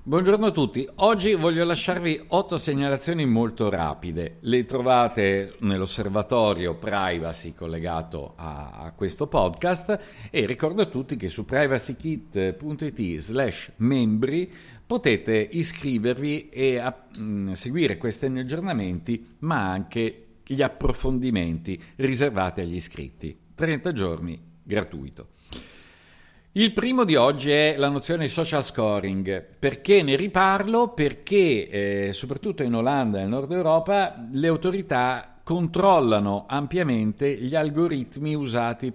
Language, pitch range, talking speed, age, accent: Italian, 100-150 Hz, 110 wpm, 50-69, native